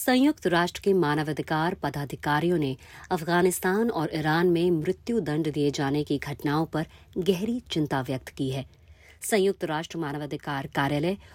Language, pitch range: Hindi, 145-185 Hz